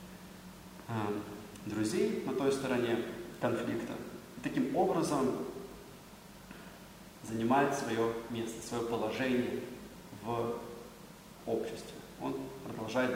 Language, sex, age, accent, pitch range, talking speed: Russian, male, 30-49, native, 115-150 Hz, 80 wpm